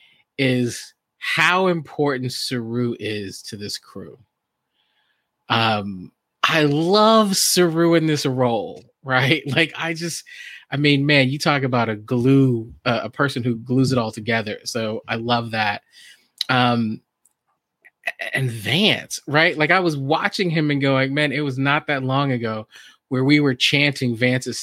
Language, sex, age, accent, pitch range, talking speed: English, male, 20-39, American, 120-150 Hz, 150 wpm